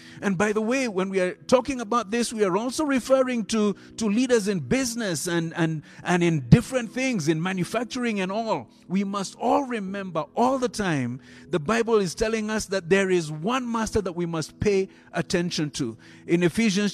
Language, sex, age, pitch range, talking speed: English, male, 50-69, 160-225 Hz, 190 wpm